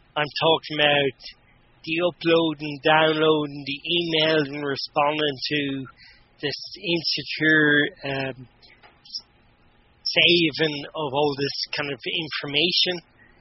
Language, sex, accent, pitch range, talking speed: English, male, Irish, 140-165 Hz, 95 wpm